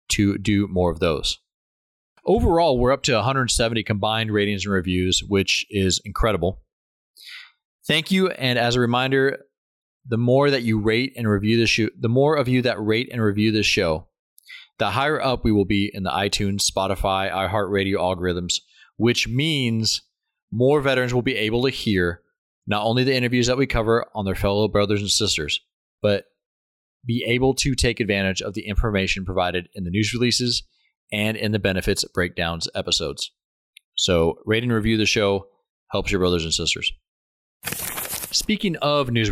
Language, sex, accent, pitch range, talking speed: English, male, American, 95-125 Hz, 170 wpm